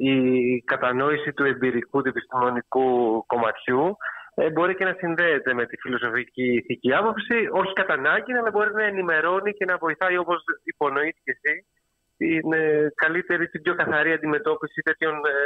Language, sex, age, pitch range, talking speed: Greek, male, 30-49, 130-180 Hz, 155 wpm